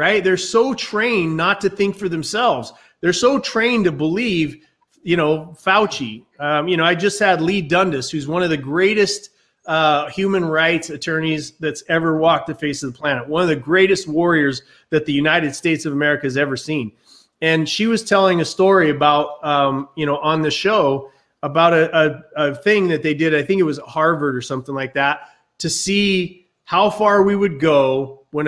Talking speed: 200 wpm